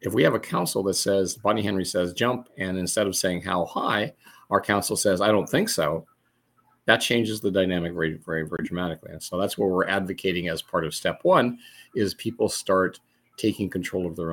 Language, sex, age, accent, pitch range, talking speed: English, male, 40-59, American, 85-95 Hz, 215 wpm